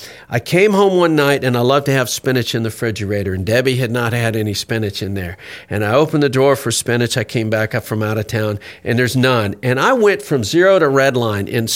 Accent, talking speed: American, 255 wpm